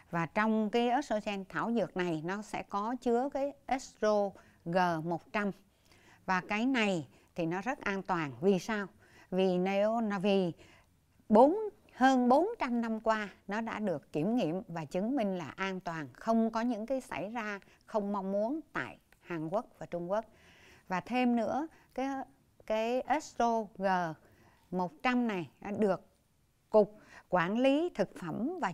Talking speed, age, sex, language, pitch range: 140 wpm, 60-79, female, Vietnamese, 175-240 Hz